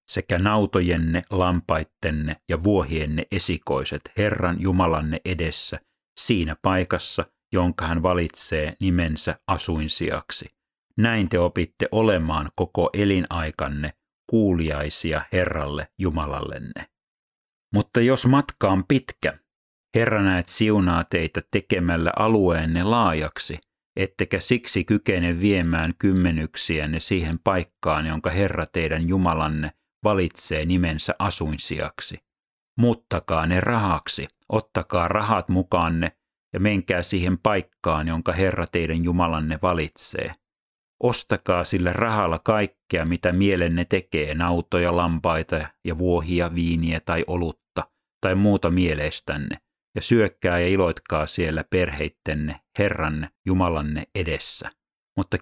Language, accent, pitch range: Finnish, native, 80-100 Hz